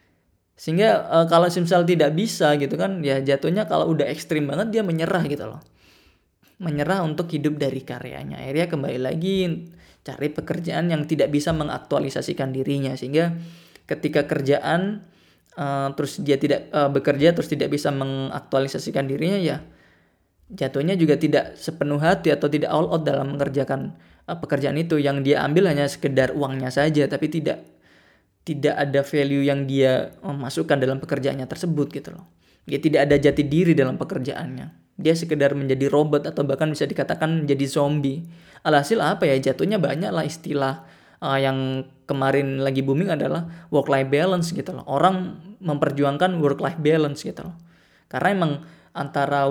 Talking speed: 155 wpm